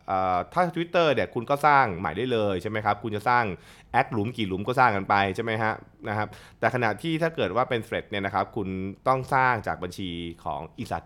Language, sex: Thai, male